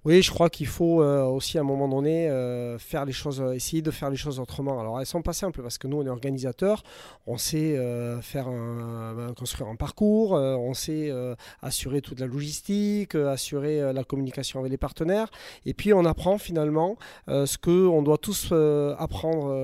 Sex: male